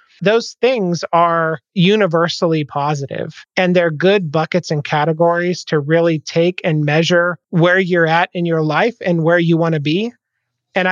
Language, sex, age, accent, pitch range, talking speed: English, male, 30-49, American, 155-185 Hz, 160 wpm